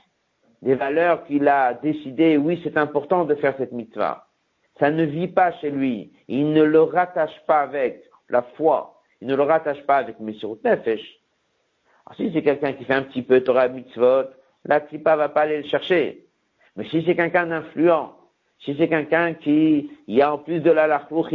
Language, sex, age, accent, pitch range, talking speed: French, male, 60-79, French, 130-165 Hz, 195 wpm